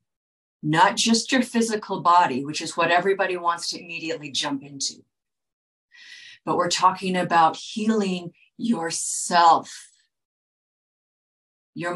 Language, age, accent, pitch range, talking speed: English, 50-69, American, 155-195 Hz, 105 wpm